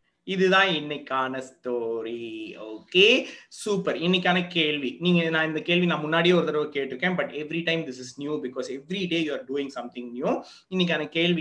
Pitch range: 130-180 Hz